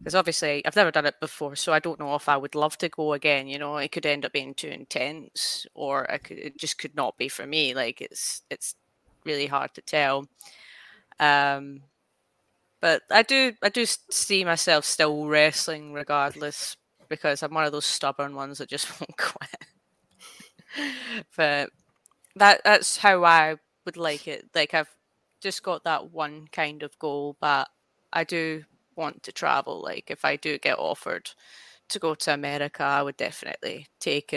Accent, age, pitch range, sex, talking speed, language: British, 20-39, 145-170 Hz, female, 180 wpm, English